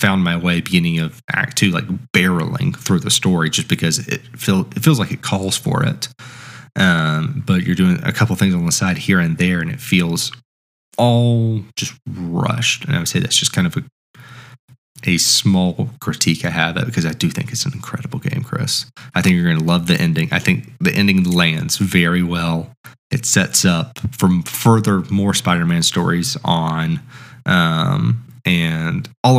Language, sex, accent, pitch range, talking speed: English, male, American, 90-140 Hz, 190 wpm